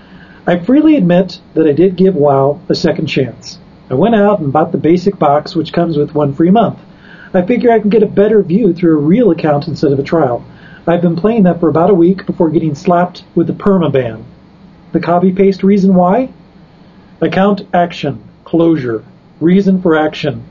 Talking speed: 195 wpm